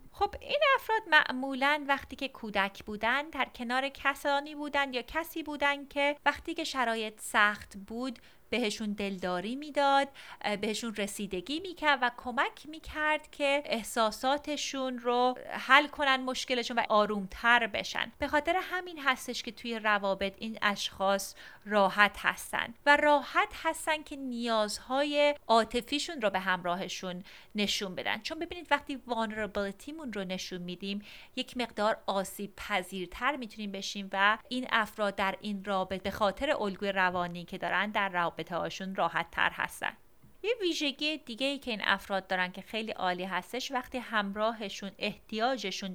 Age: 30-49